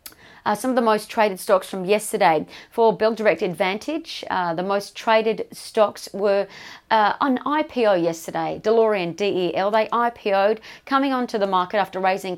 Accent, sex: Australian, female